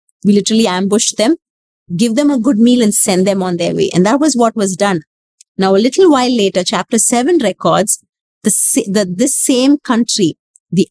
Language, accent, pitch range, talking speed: English, Indian, 190-245 Hz, 195 wpm